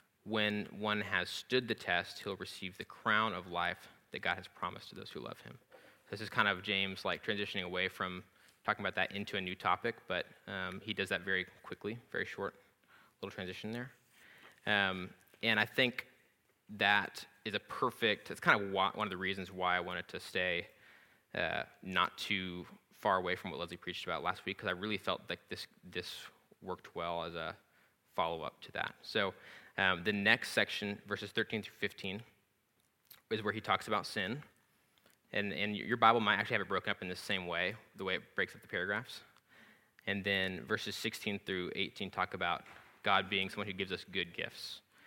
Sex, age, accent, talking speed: male, 20-39, American, 200 wpm